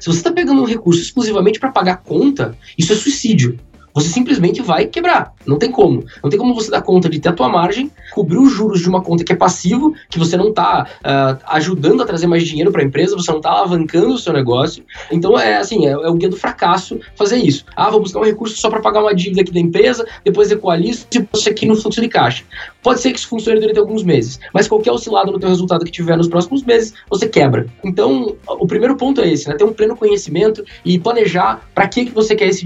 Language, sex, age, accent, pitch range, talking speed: Portuguese, male, 20-39, Brazilian, 180-245 Hz, 245 wpm